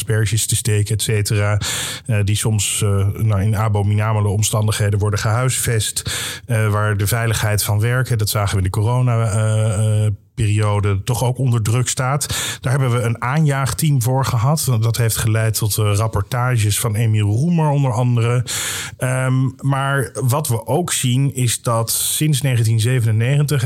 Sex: male